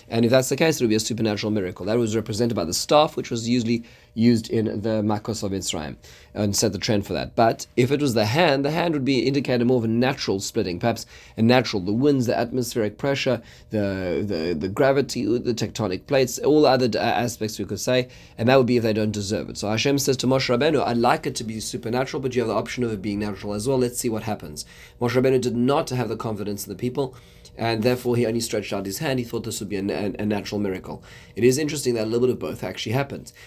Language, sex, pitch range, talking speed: English, male, 105-125 Hz, 260 wpm